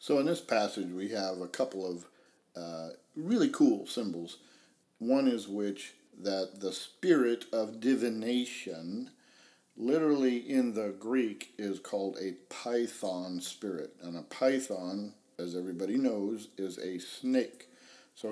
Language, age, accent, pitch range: English, 50-69, American, 95-145 Hz